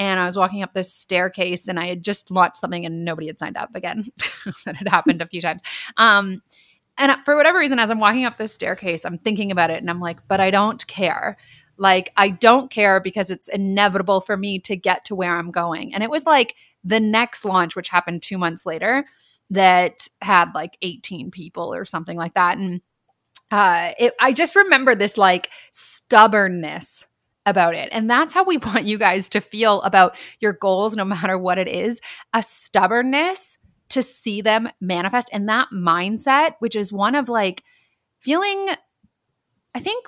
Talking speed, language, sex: 190 wpm, English, female